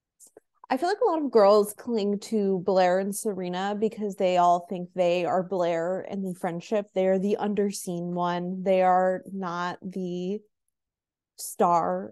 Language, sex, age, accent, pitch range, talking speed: English, female, 20-39, American, 185-225 Hz, 160 wpm